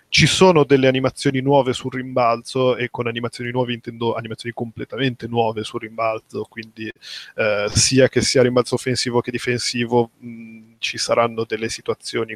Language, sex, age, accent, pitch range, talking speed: Italian, male, 20-39, native, 115-130 Hz, 150 wpm